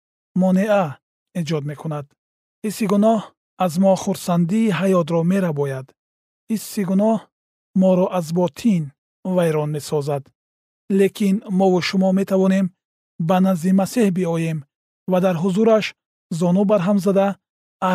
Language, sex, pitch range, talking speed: Persian, male, 150-195 Hz, 115 wpm